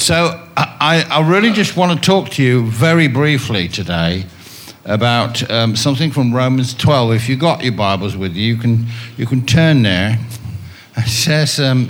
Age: 60-79